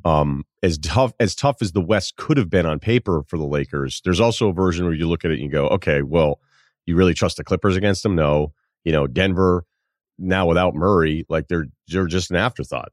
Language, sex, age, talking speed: English, male, 30-49, 230 wpm